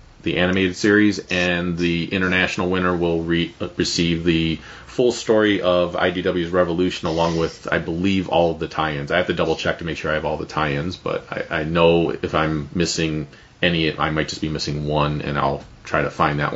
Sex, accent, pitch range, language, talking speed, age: male, American, 85-110 Hz, English, 200 wpm, 30-49